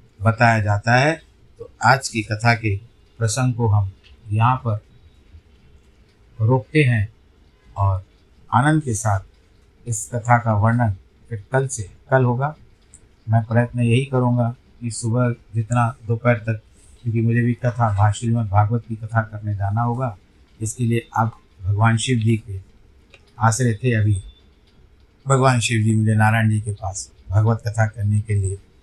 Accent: native